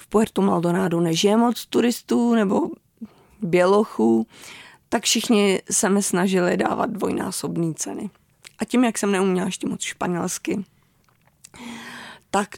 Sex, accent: female, native